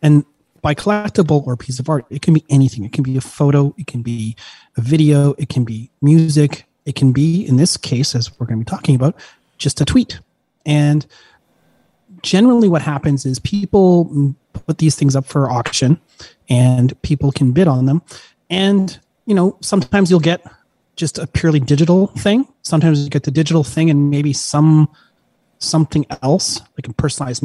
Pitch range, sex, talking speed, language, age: 135-170 Hz, male, 180 wpm, English, 30-49